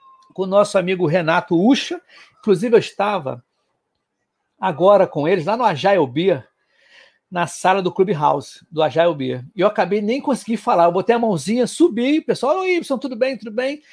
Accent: Brazilian